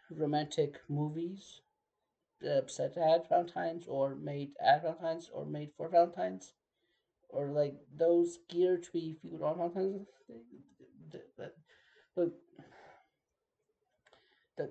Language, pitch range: English, 145-175 Hz